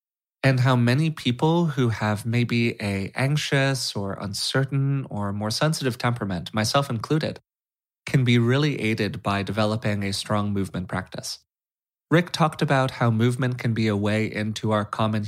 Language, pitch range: English, 105-135 Hz